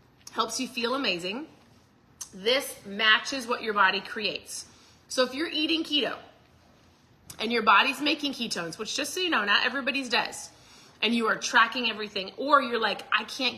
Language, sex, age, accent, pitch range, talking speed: English, female, 30-49, American, 210-270 Hz, 170 wpm